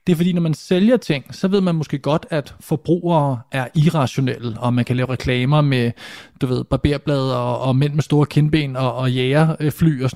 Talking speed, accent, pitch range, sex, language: 215 wpm, native, 130-165 Hz, male, Danish